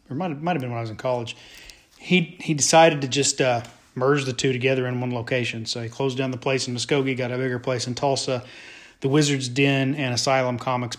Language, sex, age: English, male, 40-59